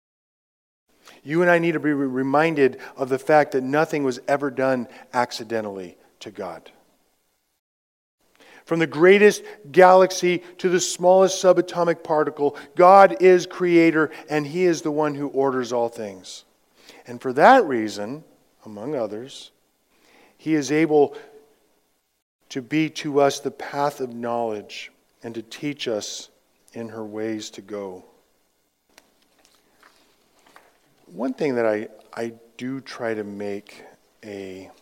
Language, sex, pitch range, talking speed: English, male, 105-155 Hz, 130 wpm